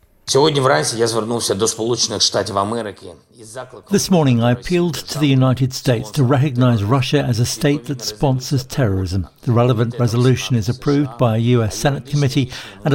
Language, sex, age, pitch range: Greek, male, 60-79, 115-145 Hz